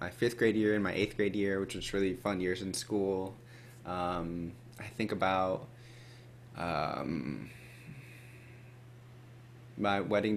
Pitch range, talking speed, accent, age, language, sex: 90-120 Hz, 135 wpm, American, 20-39, English, male